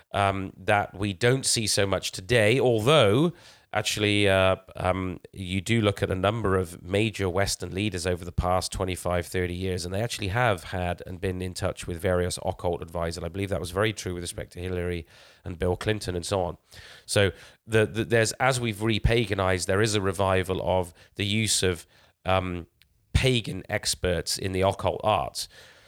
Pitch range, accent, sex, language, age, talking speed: 90-110 Hz, British, male, English, 30-49, 185 wpm